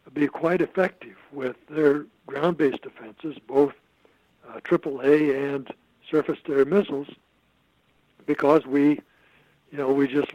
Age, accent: 60-79, American